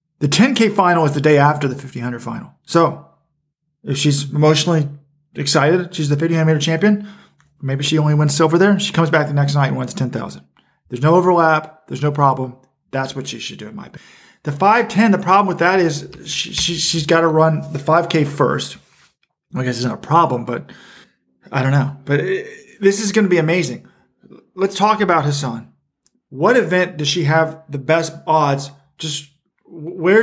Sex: male